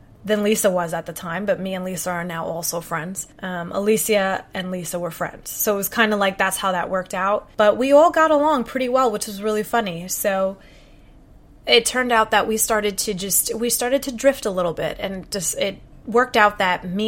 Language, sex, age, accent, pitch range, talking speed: English, female, 20-39, American, 190-225 Hz, 230 wpm